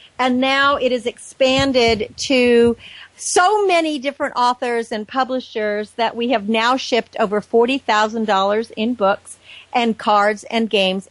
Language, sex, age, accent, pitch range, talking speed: English, female, 50-69, American, 210-260 Hz, 145 wpm